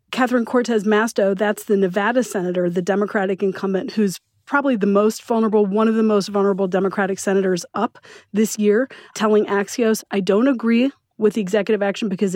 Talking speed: 170 wpm